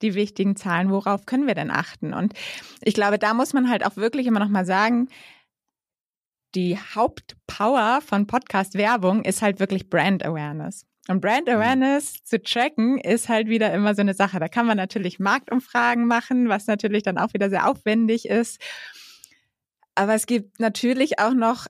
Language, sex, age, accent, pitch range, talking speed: German, female, 20-39, German, 195-235 Hz, 165 wpm